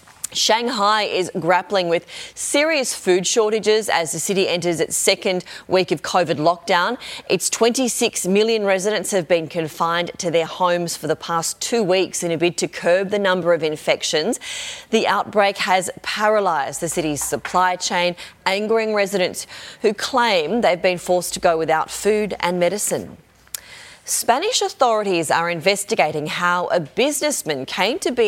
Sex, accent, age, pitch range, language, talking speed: female, Australian, 30-49, 170-215 Hz, English, 155 wpm